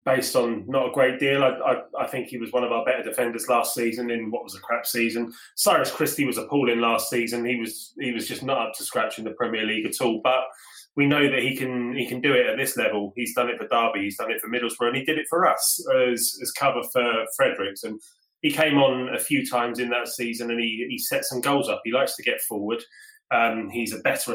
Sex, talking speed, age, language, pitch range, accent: male, 260 wpm, 20-39, English, 120-140 Hz, British